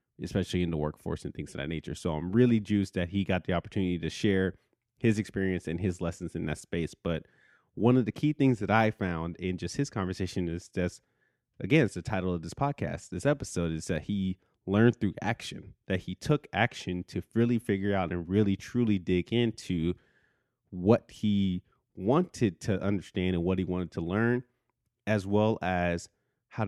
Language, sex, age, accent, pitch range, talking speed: English, male, 30-49, American, 90-110 Hz, 195 wpm